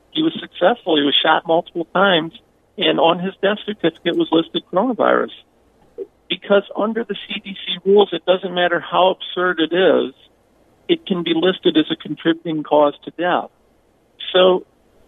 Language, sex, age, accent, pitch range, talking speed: English, male, 50-69, American, 145-200 Hz, 155 wpm